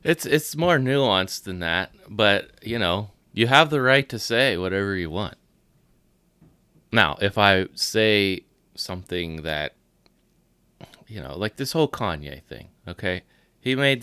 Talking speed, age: 145 wpm, 30-49